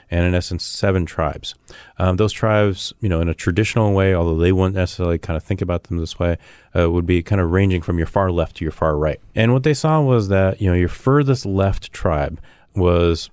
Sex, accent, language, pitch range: male, American, English, 85-105 Hz